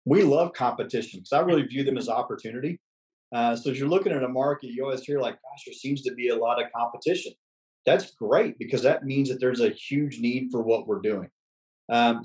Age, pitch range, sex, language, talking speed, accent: 40-59, 115-140 Hz, male, English, 225 wpm, American